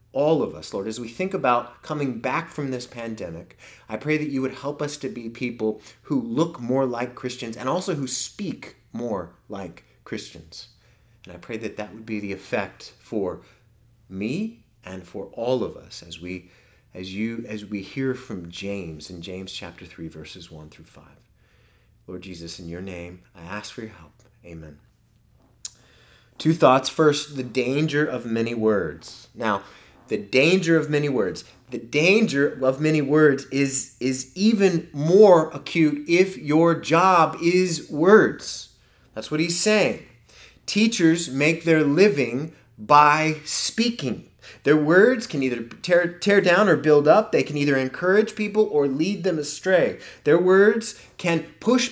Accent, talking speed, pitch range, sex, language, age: American, 165 wpm, 110-170 Hz, male, English, 30-49